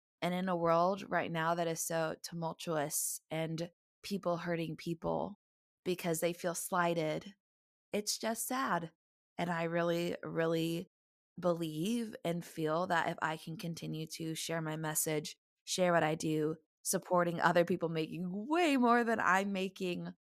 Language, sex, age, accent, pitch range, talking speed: English, female, 20-39, American, 160-185 Hz, 150 wpm